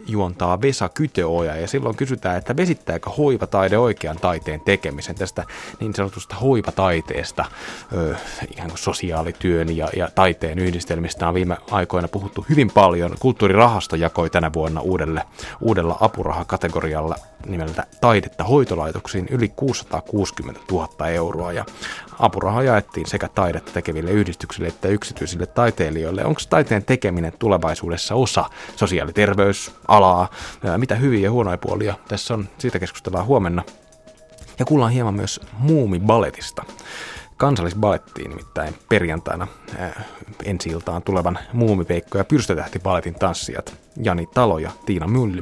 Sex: male